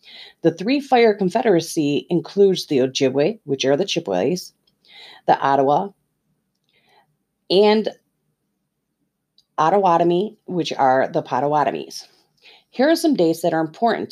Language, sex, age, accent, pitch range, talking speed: English, female, 40-59, American, 160-215 Hz, 105 wpm